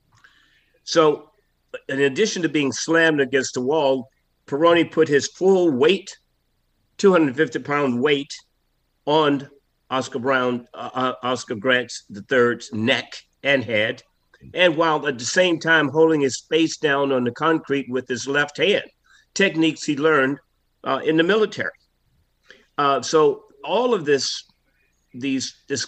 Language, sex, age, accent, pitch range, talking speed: English, male, 50-69, American, 130-165 Hz, 135 wpm